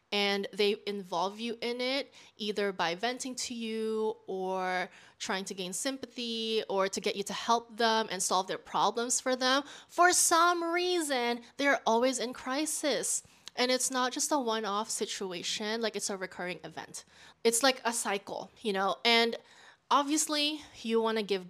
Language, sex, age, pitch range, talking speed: English, female, 20-39, 210-275 Hz, 165 wpm